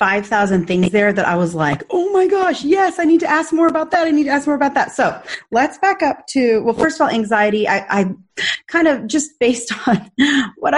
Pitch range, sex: 180-240 Hz, female